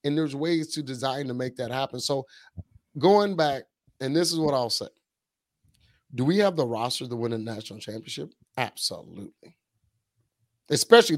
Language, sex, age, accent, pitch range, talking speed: English, male, 30-49, American, 115-145 Hz, 160 wpm